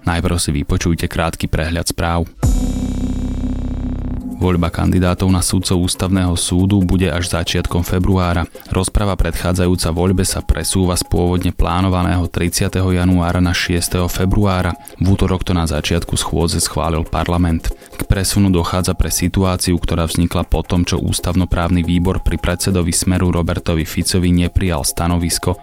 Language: Slovak